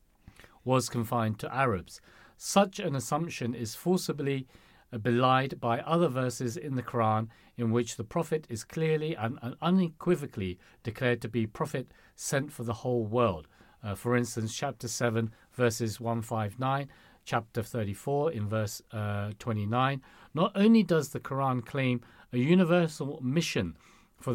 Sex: male